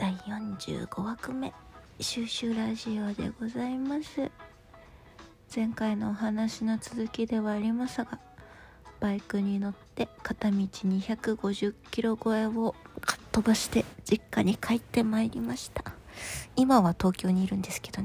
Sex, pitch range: female, 195-230 Hz